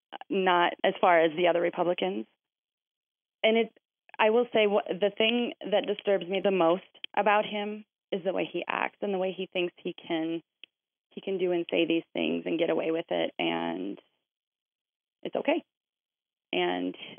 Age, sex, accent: 30-49, female, American